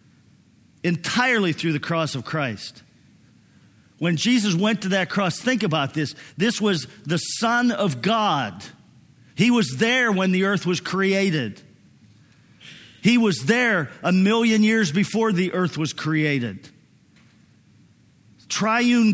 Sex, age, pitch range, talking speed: male, 50-69, 160-210 Hz, 130 wpm